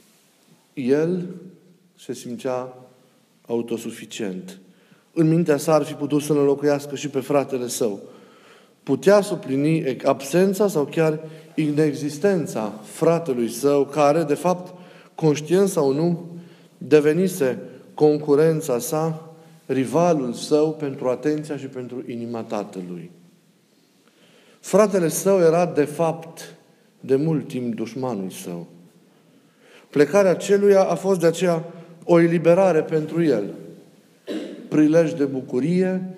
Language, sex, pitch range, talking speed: Romanian, male, 135-170 Hz, 110 wpm